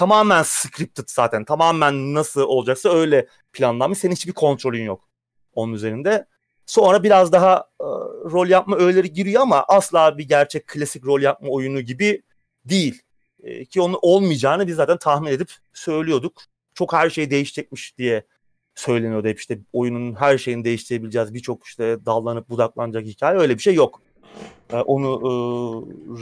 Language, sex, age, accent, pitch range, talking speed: Turkish, male, 30-49, native, 125-185 Hz, 150 wpm